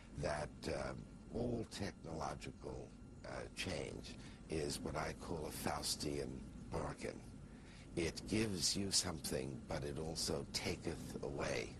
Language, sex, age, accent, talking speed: English, male, 60-79, American, 110 wpm